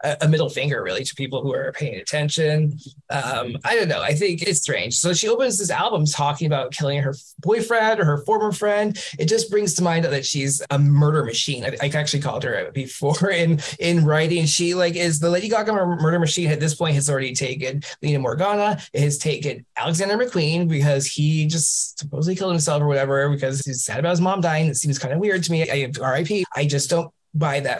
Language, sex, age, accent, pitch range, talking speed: English, male, 20-39, American, 145-170 Hz, 220 wpm